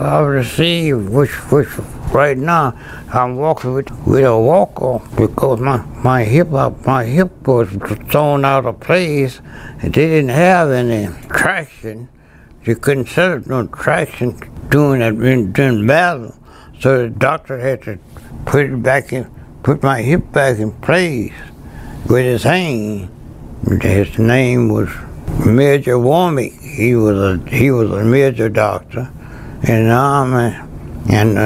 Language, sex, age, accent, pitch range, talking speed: English, male, 60-79, American, 115-140 Hz, 135 wpm